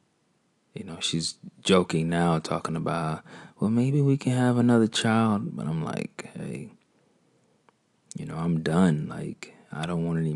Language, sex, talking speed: English, male, 155 wpm